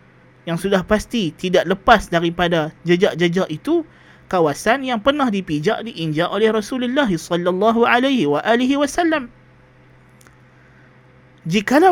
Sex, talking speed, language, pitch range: male, 85 wpm, Malay, 170-220 Hz